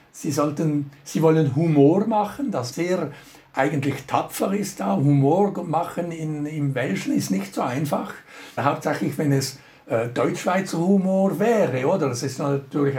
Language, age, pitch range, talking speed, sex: German, 60-79, 140-175 Hz, 150 wpm, male